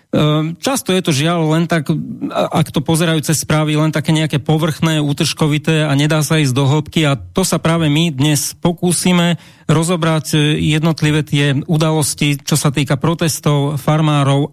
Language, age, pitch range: Slovak, 40-59, 140-165 Hz